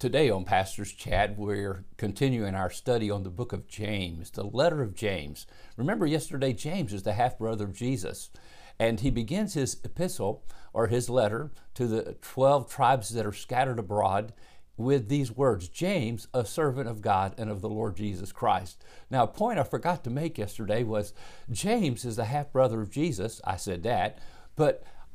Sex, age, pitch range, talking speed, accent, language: male, 50-69, 105-165 Hz, 175 wpm, American, English